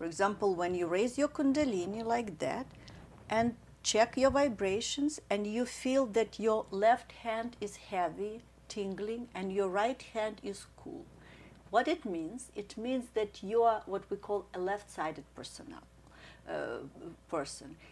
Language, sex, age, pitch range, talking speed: English, female, 50-69, 185-230 Hz, 150 wpm